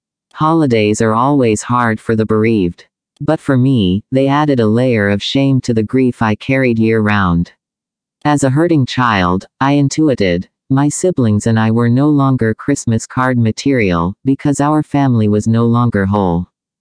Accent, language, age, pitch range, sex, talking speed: American, English, 40-59, 110-140 Hz, male, 160 wpm